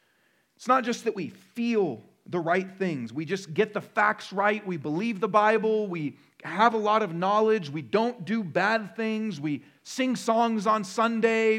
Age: 40-59